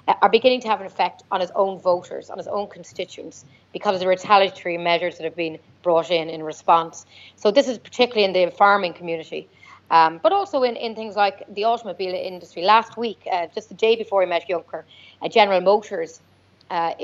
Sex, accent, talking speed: female, Irish, 205 wpm